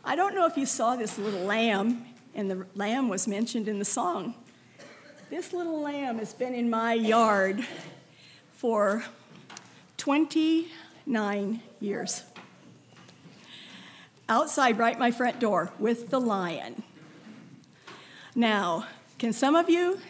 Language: English